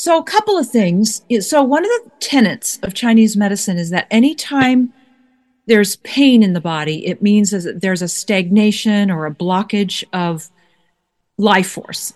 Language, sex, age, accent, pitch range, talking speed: English, female, 40-59, American, 190-235 Hz, 160 wpm